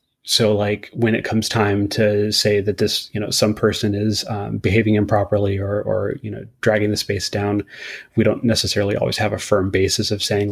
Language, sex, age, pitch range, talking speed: English, male, 30-49, 100-110 Hz, 205 wpm